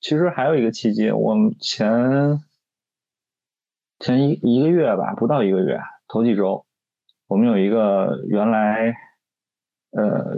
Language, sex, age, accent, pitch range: Chinese, male, 20-39, native, 100-140 Hz